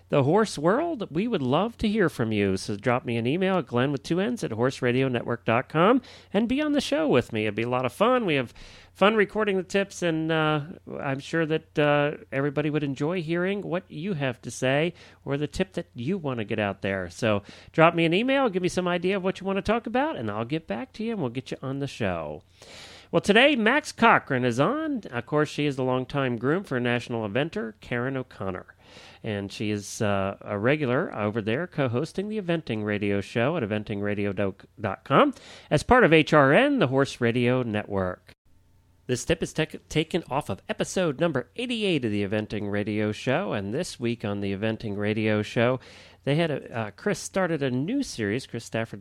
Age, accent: 40-59, American